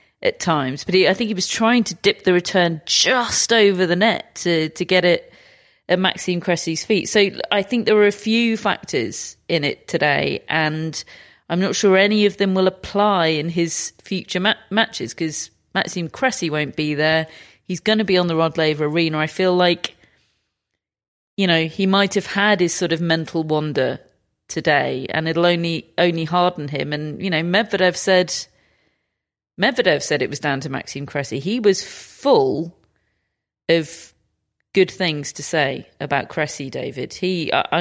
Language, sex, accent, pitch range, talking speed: English, female, British, 160-195 Hz, 180 wpm